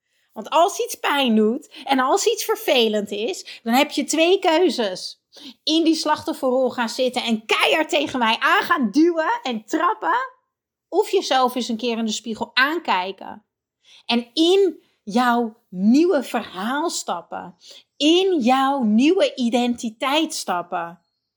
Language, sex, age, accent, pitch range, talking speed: Dutch, female, 30-49, Dutch, 220-310 Hz, 140 wpm